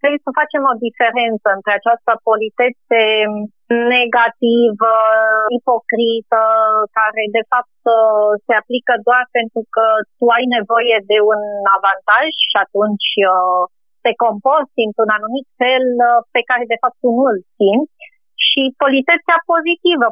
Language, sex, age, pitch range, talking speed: Romanian, female, 30-49, 220-265 Hz, 125 wpm